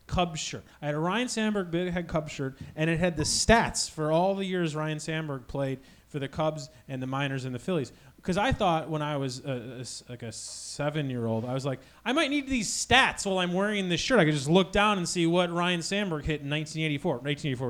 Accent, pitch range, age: American, 130-185 Hz, 30-49